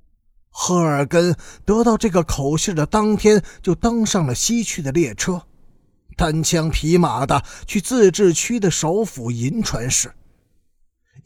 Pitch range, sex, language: 140-215 Hz, male, Chinese